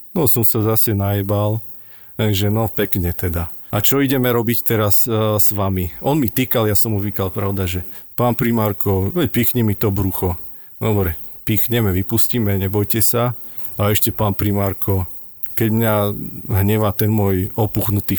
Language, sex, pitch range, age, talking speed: Slovak, male, 100-115 Hz, 40-59, 160 wpm